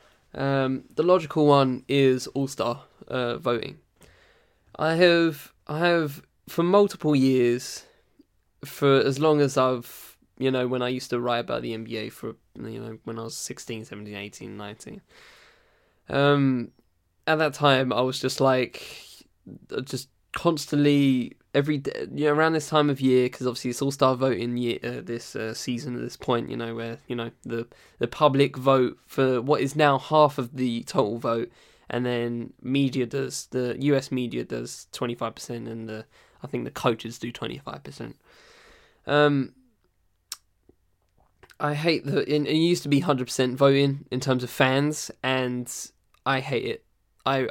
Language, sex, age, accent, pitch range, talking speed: English, male, 10-29, British, 120-145 Hz, 170 wpm